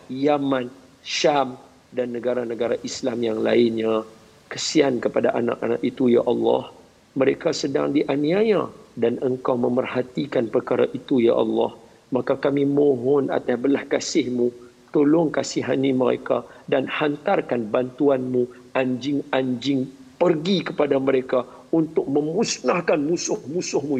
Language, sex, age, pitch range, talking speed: Malayalam, male, 50-69, 115-140 Hz, 105 wpm